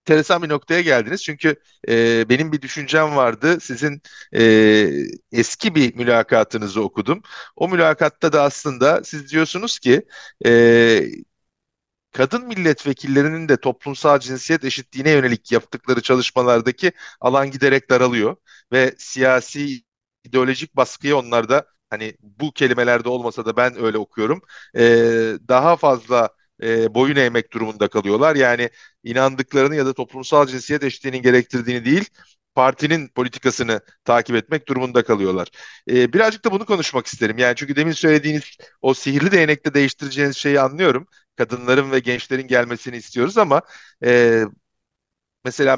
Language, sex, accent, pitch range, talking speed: Turkish, male, native, 120-150 Hz, 125 wpm